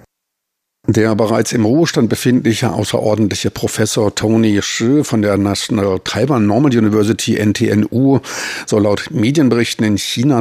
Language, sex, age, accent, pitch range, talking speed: German, male, 50-69, German, 100-115 Hz, 120 wpm